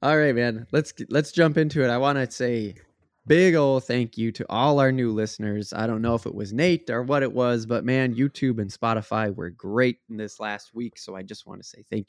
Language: English